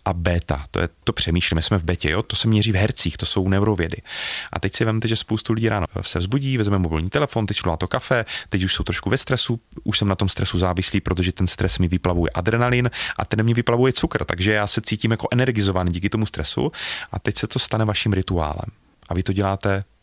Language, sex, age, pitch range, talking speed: Czech, male, 30-49, 90-110 Hz, 235 wpm